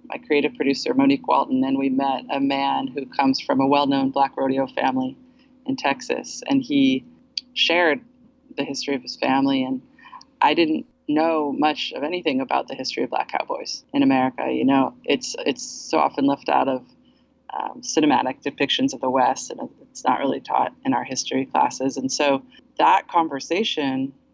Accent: American